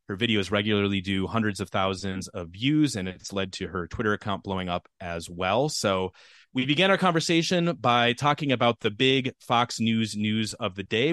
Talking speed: 195 wpm